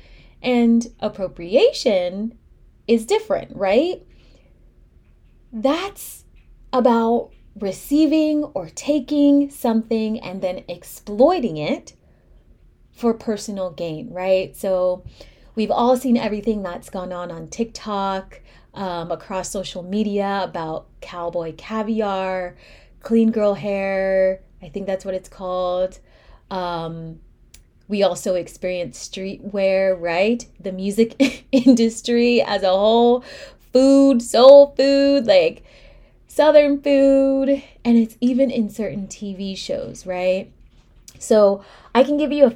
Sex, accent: female, American